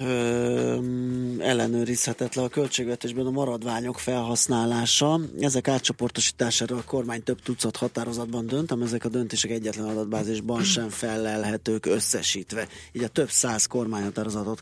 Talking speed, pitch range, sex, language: 110 wpm, 105-125 Hz, male, Hungarian